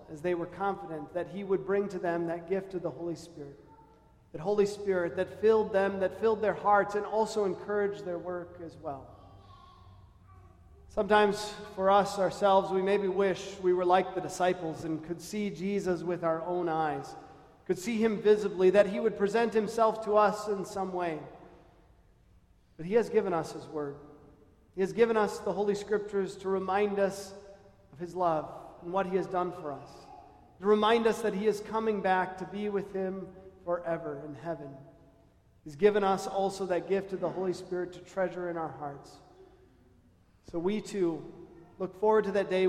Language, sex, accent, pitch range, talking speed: English, male, American, 160-200 Hz, 185 wpm